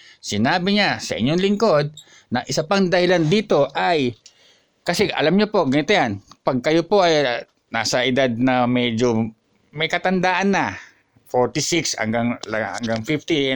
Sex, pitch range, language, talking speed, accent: male, 130-185 Hz, English, 140 wpm, Filipino